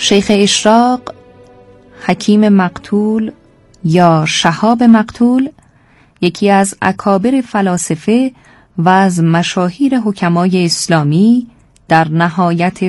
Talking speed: 85 wpm